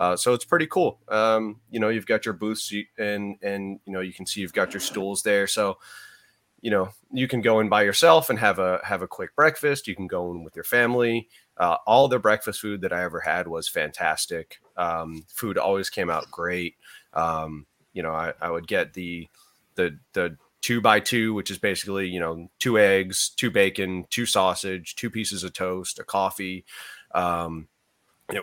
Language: English